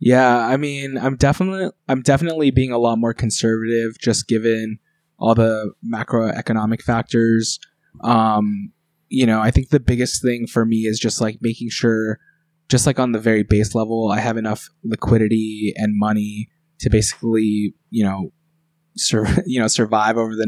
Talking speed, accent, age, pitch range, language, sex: 165 wpm, American, 20-39, 110-125 Hz, English, male